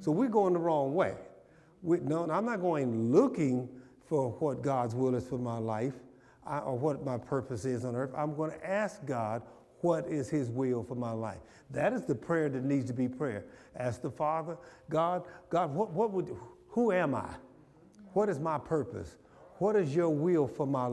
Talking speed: 200 wpm